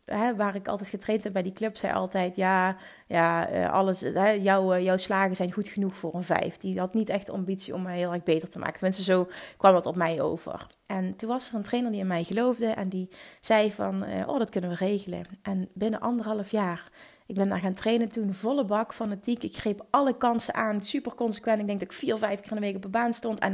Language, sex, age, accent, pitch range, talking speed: Dutch, female, 30-49, Dutch, 190-235 Hz, 250 wpm